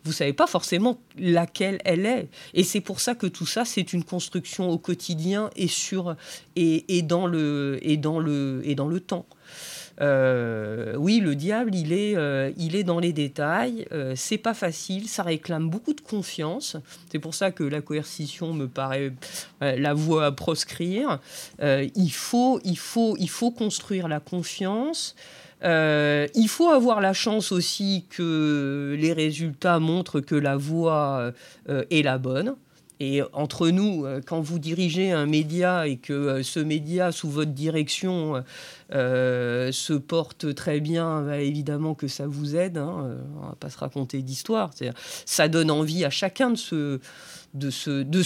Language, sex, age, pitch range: French, female, 50-69, 145-185 Hz